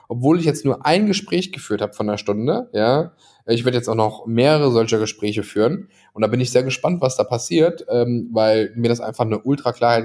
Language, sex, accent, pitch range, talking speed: German, male, German, 100-120 Hz, 220 wpm